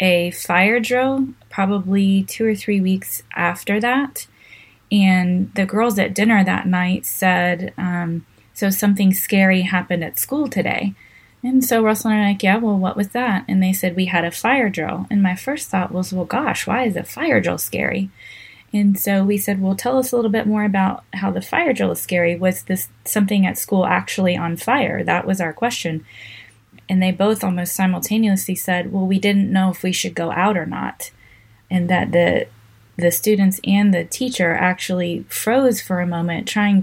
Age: 20-39